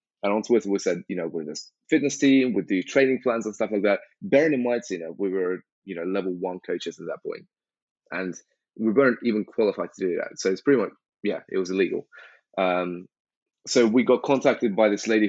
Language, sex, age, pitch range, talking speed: English, male, 20-39, 95-115 Hz, 230 wpm